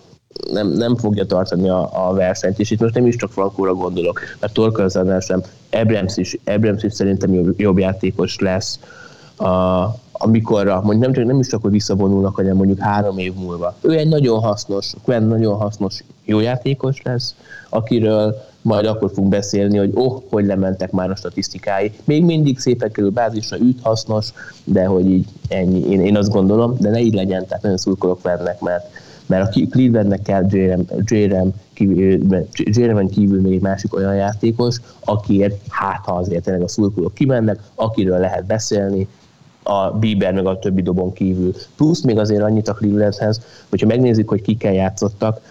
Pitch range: 95-110 Hz